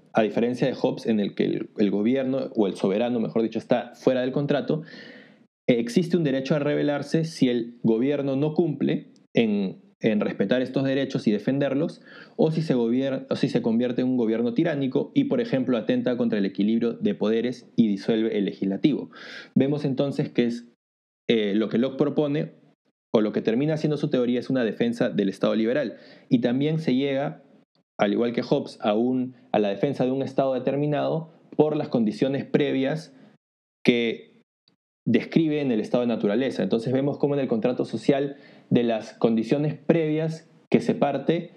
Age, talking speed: 20-39, 180 wpm